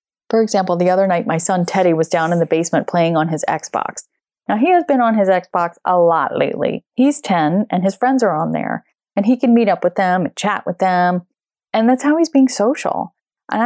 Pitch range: 165-225 Hz